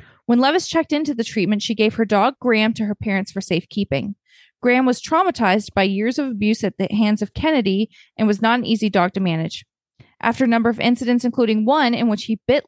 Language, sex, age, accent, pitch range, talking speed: English, female, 20-39, American, 200-245 Hz, 225 wpm